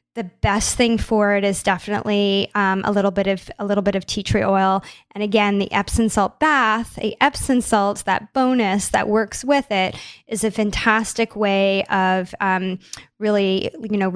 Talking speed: 180 wpm